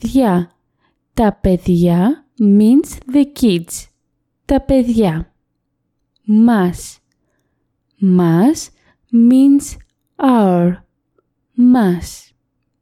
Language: Greek